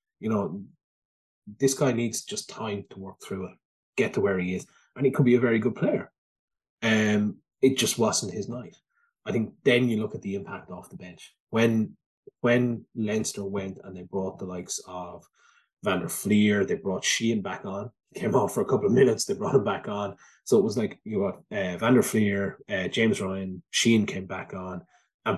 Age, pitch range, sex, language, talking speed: 20-39, 100-135 Hz, male, English, 215 wpm